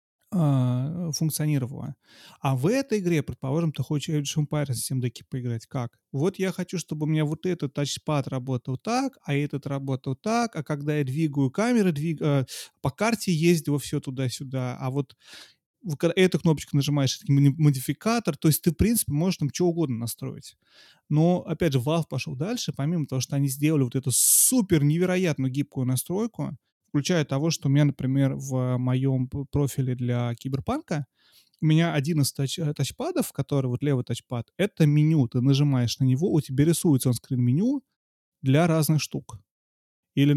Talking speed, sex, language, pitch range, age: 160 wpm, male, Russian, 130-165 Hz, 30-49